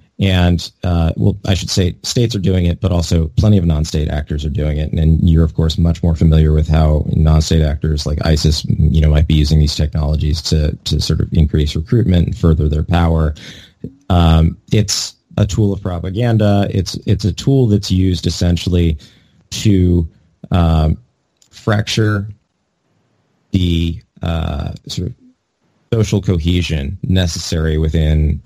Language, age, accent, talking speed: English, 30-49, American, 155 wpm